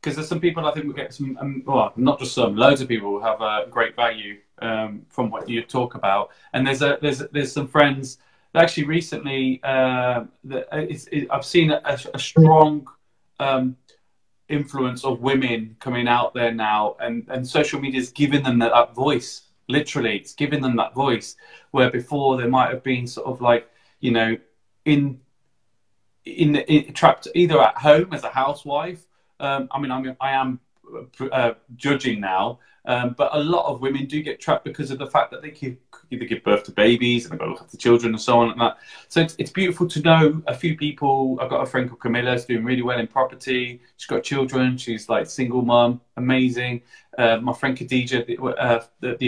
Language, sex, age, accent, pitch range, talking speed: English, male, 20-39, British, 120-140 Hz, 210 wpm